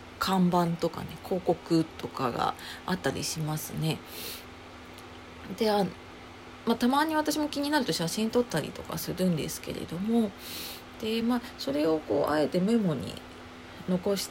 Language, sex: Japanese, female